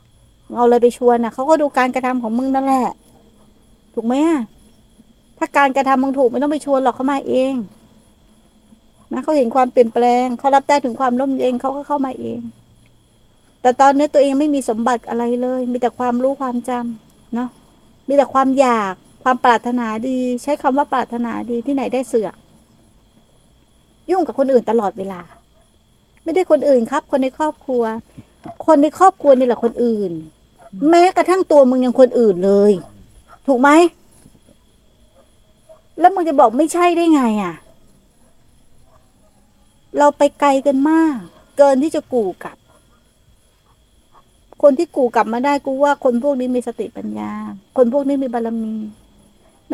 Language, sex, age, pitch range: Thai, female, 60-79, 235-285 Hz